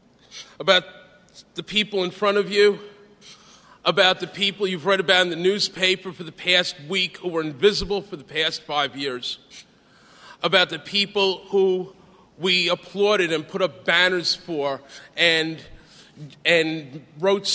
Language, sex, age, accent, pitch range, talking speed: English, male, 40-59, American, 165-195 Hz, 145 wpm